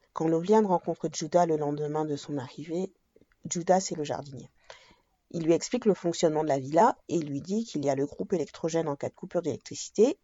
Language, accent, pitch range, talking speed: French, French, 150-190 Hz, 210 wpm